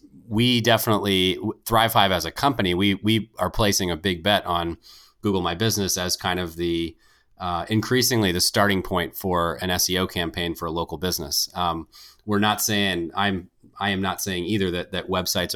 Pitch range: 85-105 Hz